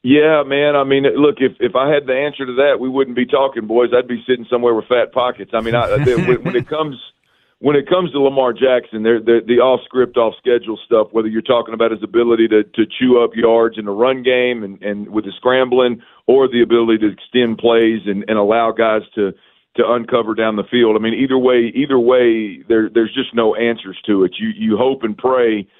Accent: American